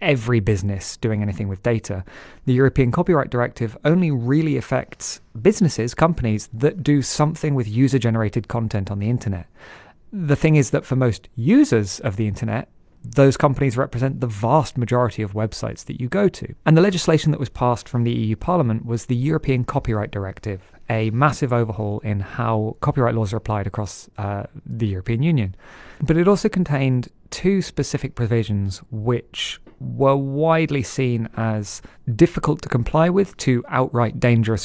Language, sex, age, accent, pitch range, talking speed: English, male, 30-49, British, 110-140 Hz, 165 wpm